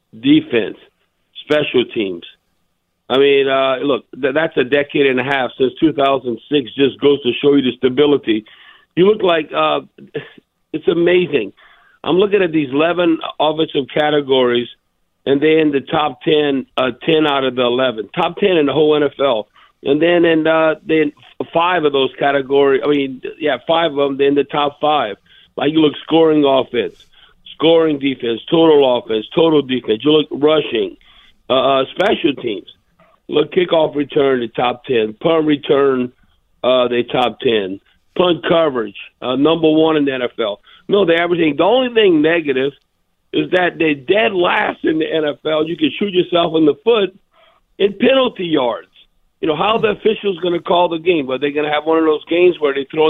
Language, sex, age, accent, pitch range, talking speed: English, male, 50-69, American, 135-165 Hz, 180 wpm